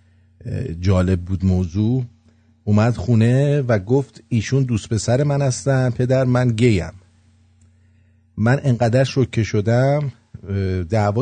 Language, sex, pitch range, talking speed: English, male, 100-130 Hz, 105 wpm